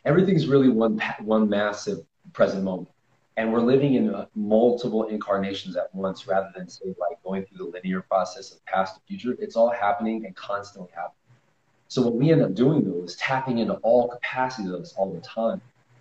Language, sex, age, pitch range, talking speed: English, male, 30-49, 95-120 Hz, 195 wpm